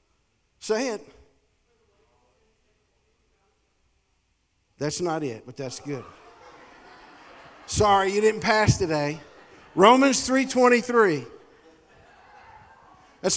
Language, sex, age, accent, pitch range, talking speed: English, male, 50-69, American, 135-210 Hz, 70 wpm